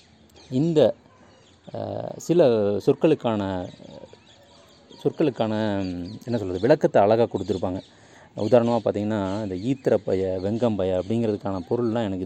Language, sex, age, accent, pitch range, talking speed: Tamil, male, 30-49, native, 100-125 Hz, 90 wpm